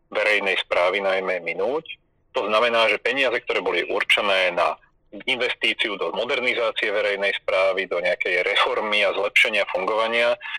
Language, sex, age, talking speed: Slovak, male, 40-59, 130 wpm